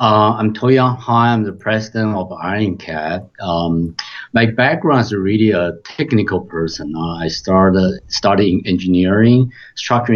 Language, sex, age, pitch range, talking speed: English, male, 50-69, 90-110 Hz, 135 wpm